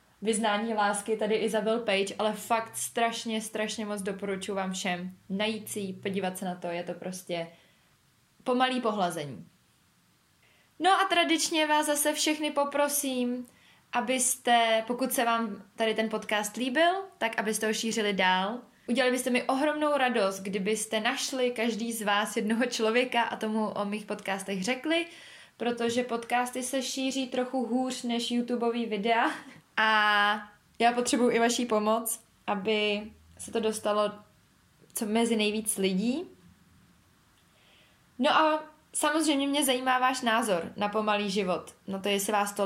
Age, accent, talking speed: 20-39, native, 140 wpm